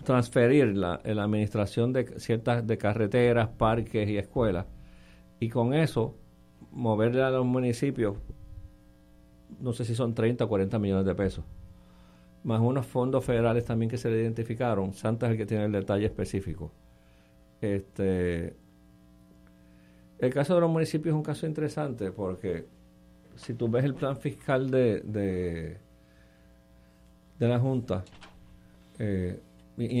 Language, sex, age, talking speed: Spanish, male, 50-69, 140 wpm